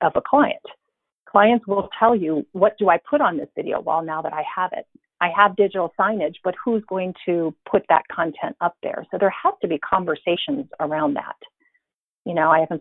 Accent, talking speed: American, 210 wpm